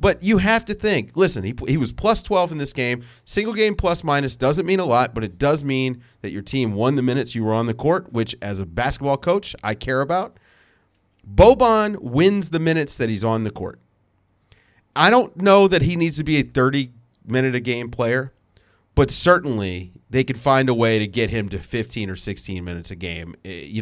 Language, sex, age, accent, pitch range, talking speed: English, male, 30-49, American, 105-145 Hz, 210 wpm